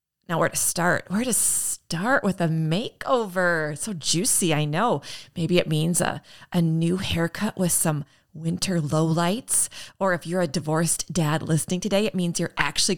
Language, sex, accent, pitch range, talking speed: English, female, American, 170-215 Hz, 170 wpm